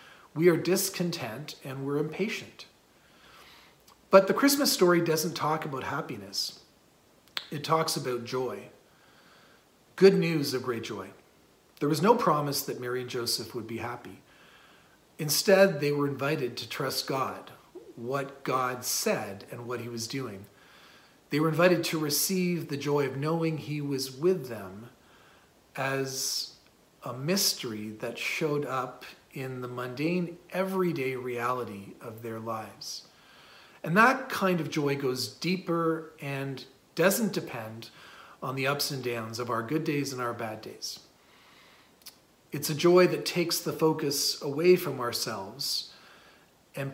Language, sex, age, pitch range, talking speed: English, male, 40-59, 125-170 Hz, 140 wpm